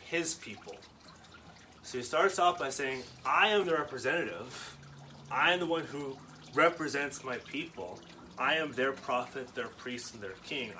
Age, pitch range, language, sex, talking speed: 30-49, 125-170 Hz, English, male, 160 wpm